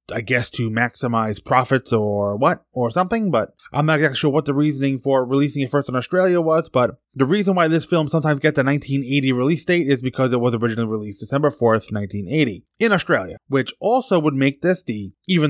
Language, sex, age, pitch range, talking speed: English, male, 20-39, 115-155 Hz, 210 wpm